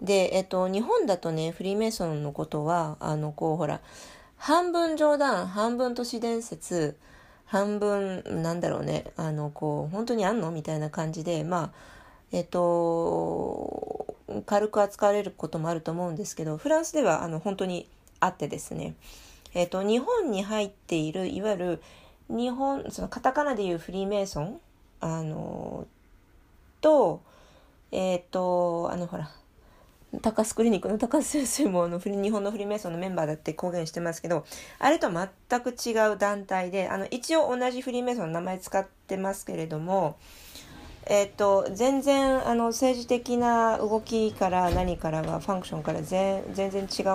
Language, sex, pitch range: Japanese, female, 165-215 Hz